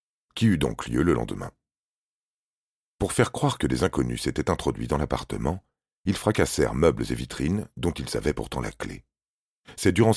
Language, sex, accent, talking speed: French, male, French, 170 wpm